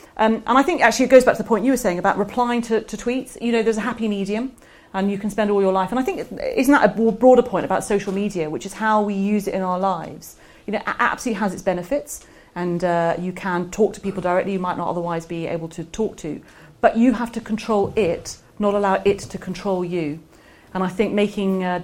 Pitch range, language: 175-220 Hz, English